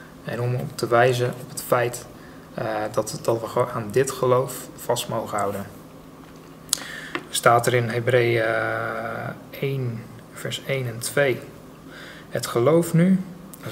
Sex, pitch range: male, 115-135 Hz